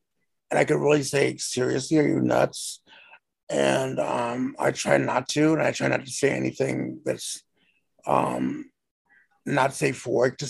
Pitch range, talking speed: 125-160 Hz, 165 wpm